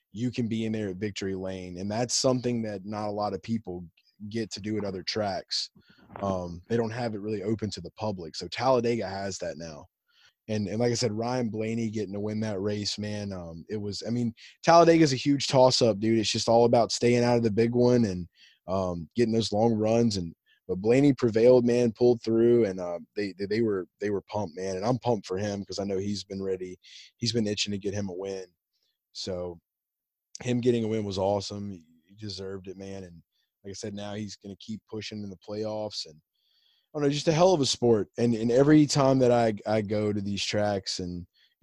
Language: English